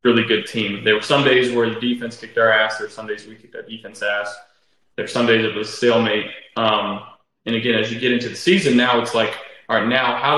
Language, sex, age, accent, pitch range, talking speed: English, male, 20-39, American, 110-125 Hz, 265 wpm